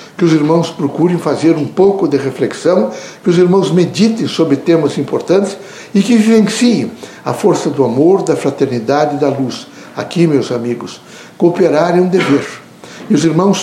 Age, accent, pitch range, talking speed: 60-79, Brazilian, 150-195 Hz, 165 wpm